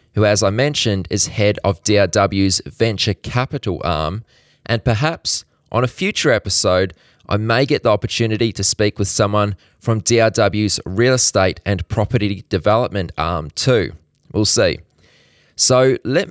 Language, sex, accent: English, male, Australian